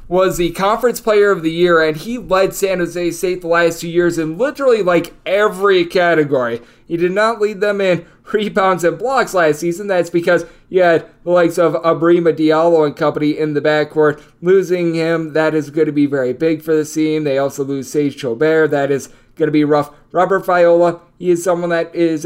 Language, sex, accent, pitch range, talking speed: English, male, American, 155-190 Hz, 210 wpm